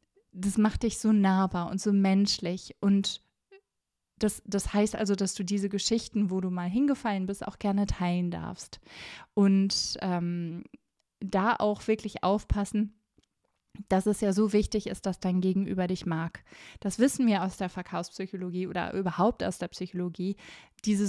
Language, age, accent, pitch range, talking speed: German, 20-39, German, 180-215 Hz, 155 wpm